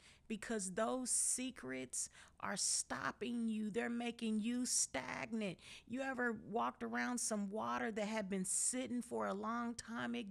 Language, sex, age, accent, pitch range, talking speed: English, female, 40-59, American, 135-215 Hz, 145 wpm